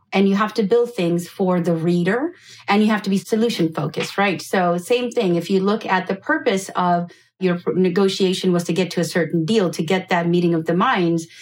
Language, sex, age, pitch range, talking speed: English, female, 30-49, 170-215 Hz, 225 wpm